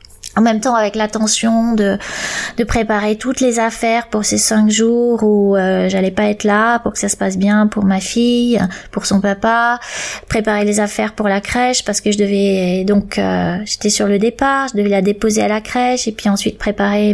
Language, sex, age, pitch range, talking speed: French, female, 20-39, 205-235 Hz, 210 wpm